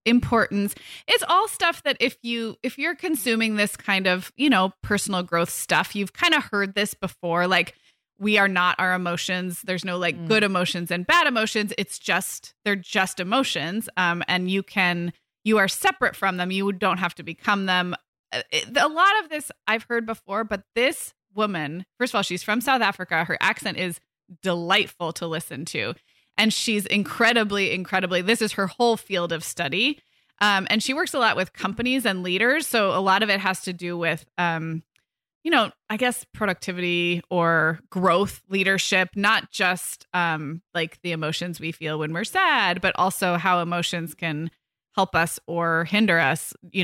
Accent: American